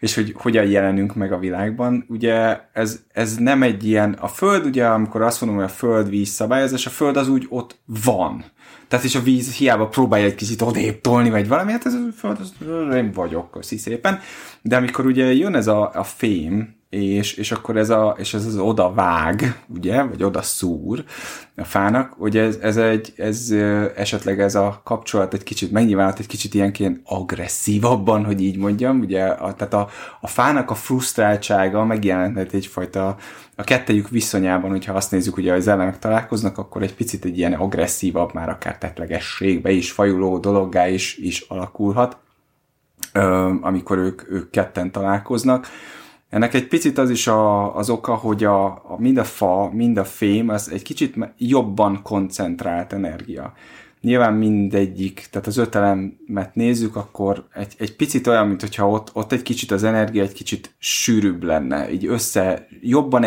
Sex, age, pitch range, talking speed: male, 30-49, 95-115 Hz, 170 wpm